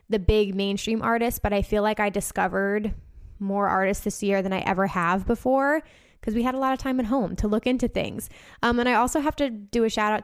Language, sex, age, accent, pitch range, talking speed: English, female, 10-29, American, 200-225 Hz, 245 wpm